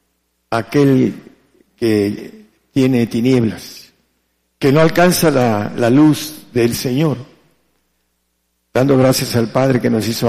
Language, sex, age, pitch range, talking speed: Spanish, male, 50-69, 105-140 Hz, 110 wpm